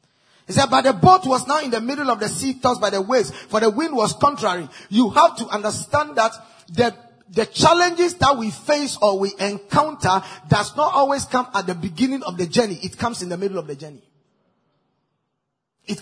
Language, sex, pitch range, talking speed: English, male, 195-280 Hz, 205 wpm